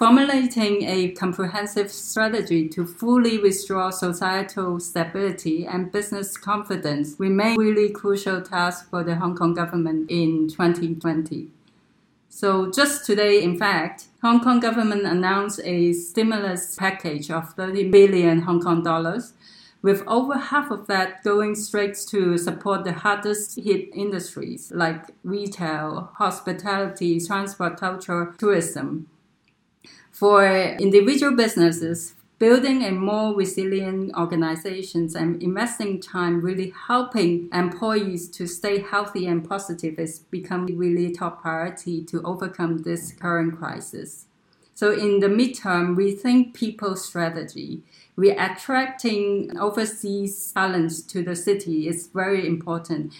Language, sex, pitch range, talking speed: English, female, 170-205 Hz, 125 wpm